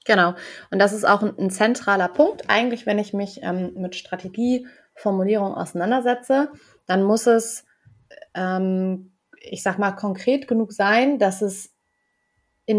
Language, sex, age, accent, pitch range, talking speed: German, female, 20-39, German, 190-225 Hz, 140 wpm